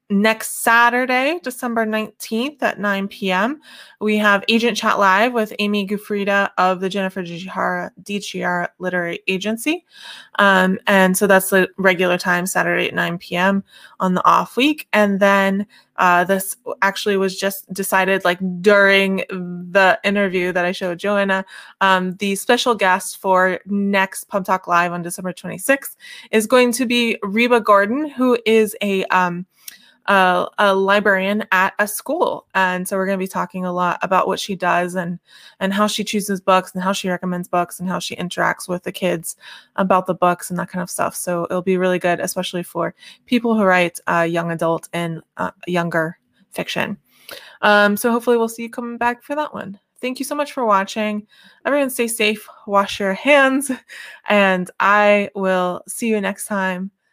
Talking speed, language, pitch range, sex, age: 175 wpm, English, 185-220 Hz, female, 20-39